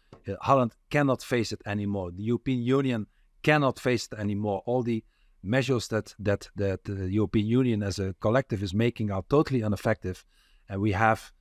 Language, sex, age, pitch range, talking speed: English, male, 50-69, 95-125 Hz, 180 wpm